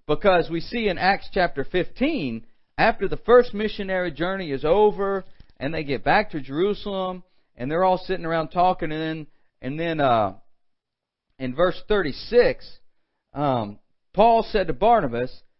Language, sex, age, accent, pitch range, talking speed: English, male, 40-59, American, 140-220 Hz, 145 wpm